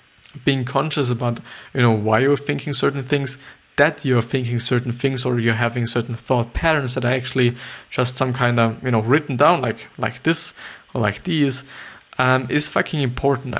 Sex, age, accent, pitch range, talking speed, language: male, 20-39, German, 120-135 Hz, 185 wpm, English